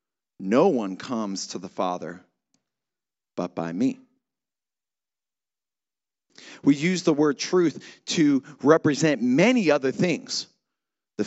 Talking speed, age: 105 wpm, 40-59